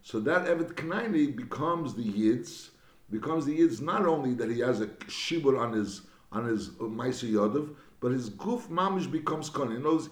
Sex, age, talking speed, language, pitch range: male, 60-79, 180 wpm, English, 125-170 Hz